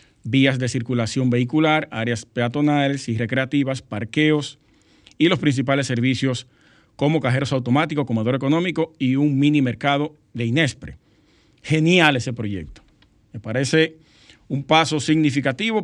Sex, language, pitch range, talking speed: male, Spanish, 120-150 Hz, 120 wpm